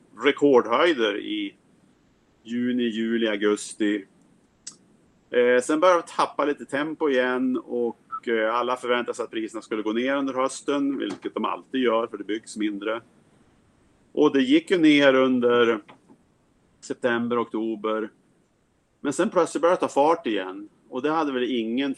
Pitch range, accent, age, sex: 110-135 Hz, Norwegian, 30-49, male